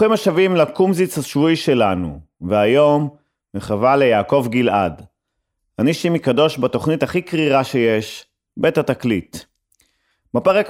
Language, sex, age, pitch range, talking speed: Hebrew, male, 30-49, 115-155 Hz, 105 wpm